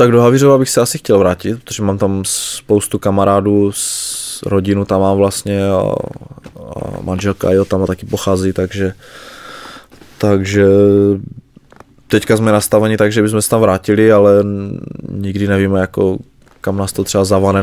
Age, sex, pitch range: 20-39, male, 95-105 Hz